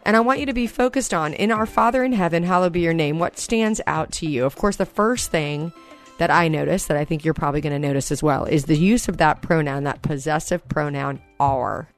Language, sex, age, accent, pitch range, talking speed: English, female, 40-59, American, 155-190 Hz, 250 wpm